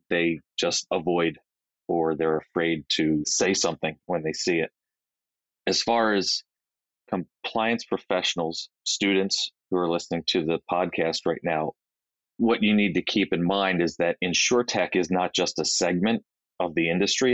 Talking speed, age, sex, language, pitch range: 155 wpm, 30-49, male, English, 85-105 Hz